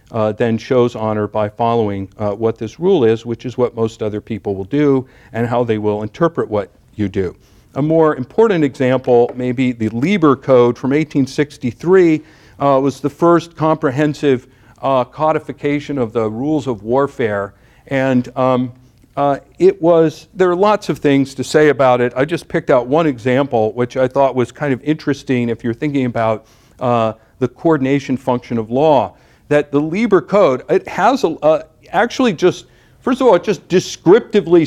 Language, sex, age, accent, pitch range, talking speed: English, male, 50-69, American, 120-155 Hz, 180 wpm